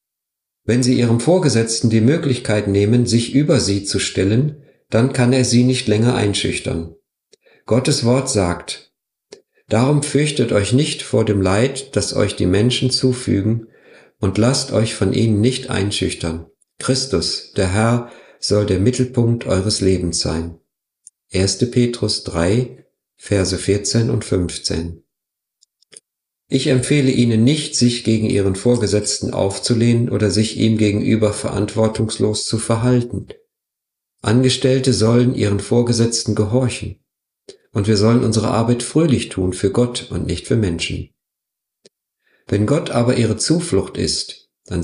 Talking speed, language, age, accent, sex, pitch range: 130 wpm, German, 50-69, German, male, 100-125 Hz